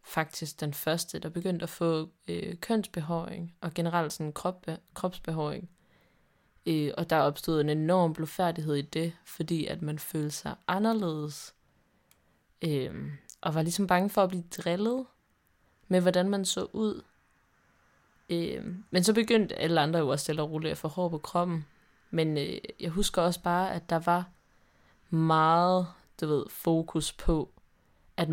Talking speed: 155 wpm